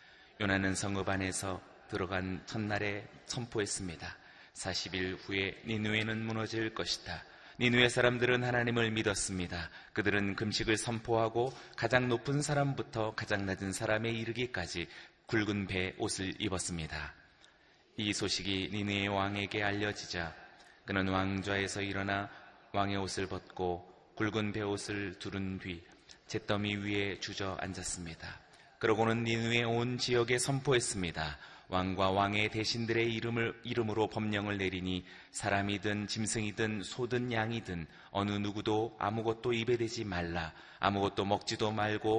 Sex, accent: male, native